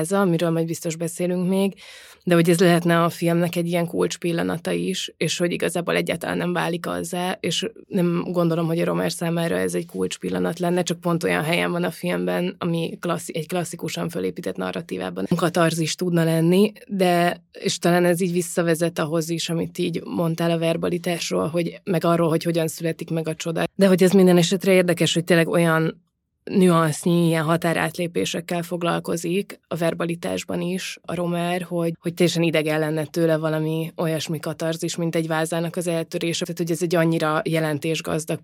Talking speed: 170 wpm